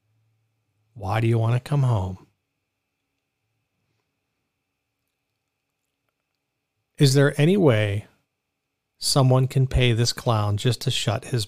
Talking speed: 105 wpm